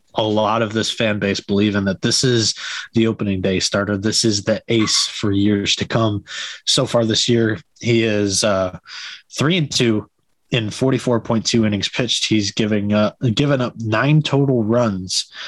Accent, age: American, 20-39